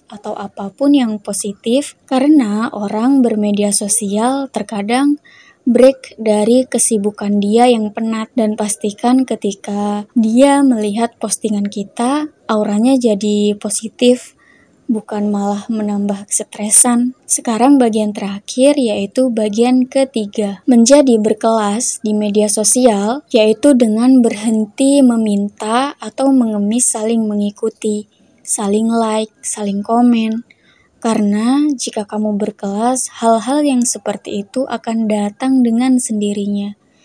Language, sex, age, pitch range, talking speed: Indonesian, female, 20-39, 210-245 Hz, 105 wpm